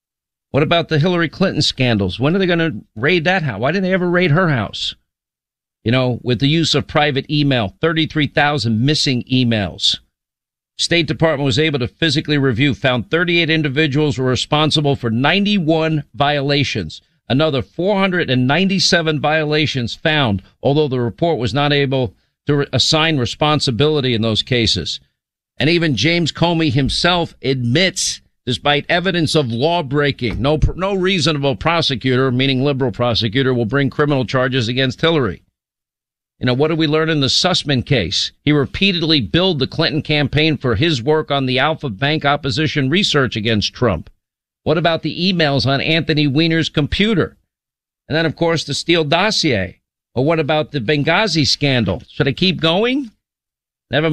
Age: 50-69